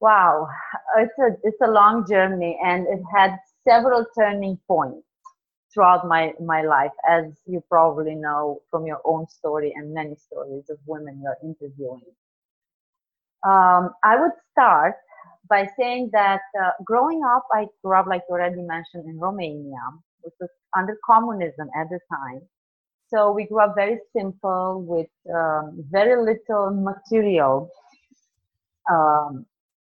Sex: female